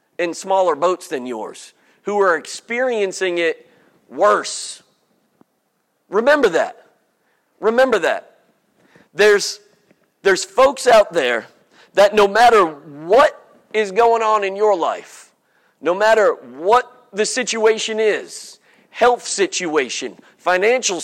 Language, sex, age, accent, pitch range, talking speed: English, male, 50-69, American, 195-245 Hz, 110 wpm